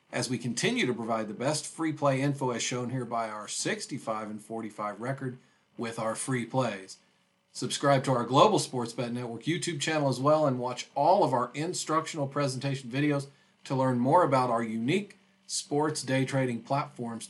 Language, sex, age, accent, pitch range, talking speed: English, male, 40-59, American, 100-125 Hz, 175 wpm